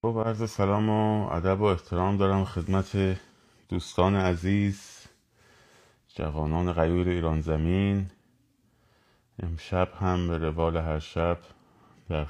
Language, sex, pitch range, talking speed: Persian, male, 80-105 Hz, 100 wpm